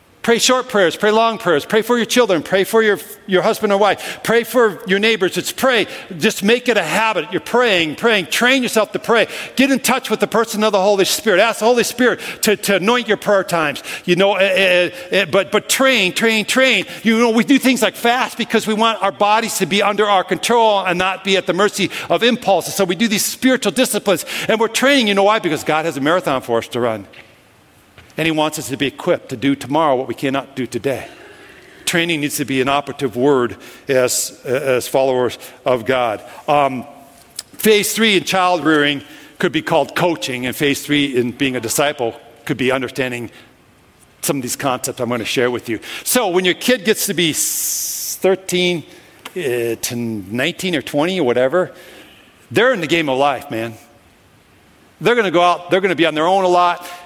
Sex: male